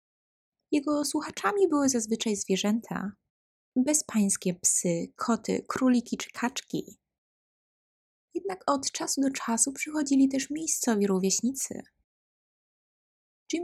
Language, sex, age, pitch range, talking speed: Polish, female, 20-39, 195-265 Hz, 90 wpm